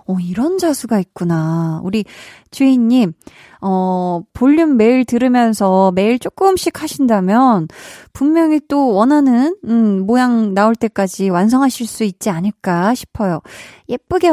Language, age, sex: Korean, 20-39, female